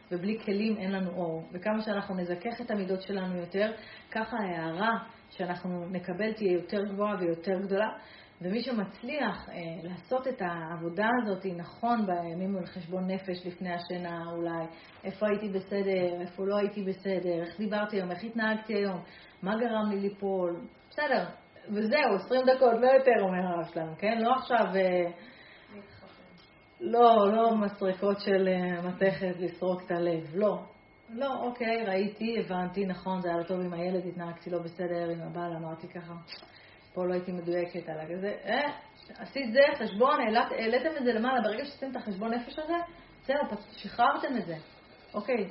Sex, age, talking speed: female, 30-49, 155 wpm